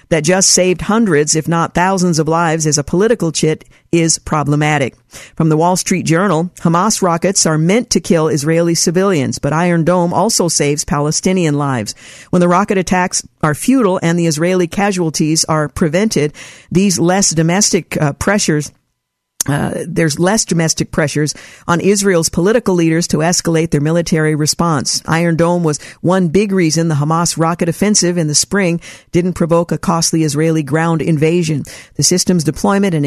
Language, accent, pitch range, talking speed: English, American, 155-185 Hz, 165 wpm